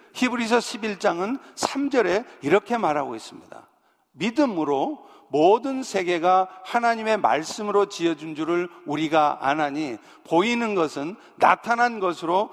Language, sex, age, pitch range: Korean, male, 50-69, 185-245 Hz